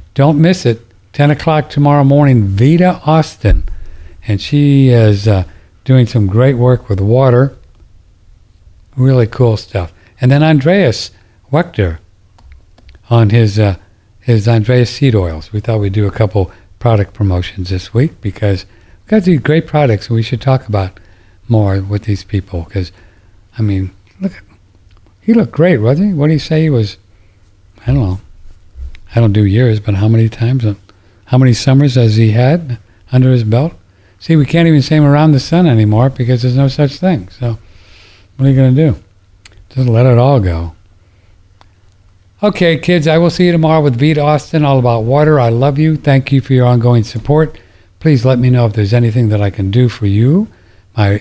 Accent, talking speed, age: American, 185 wpm, 60-79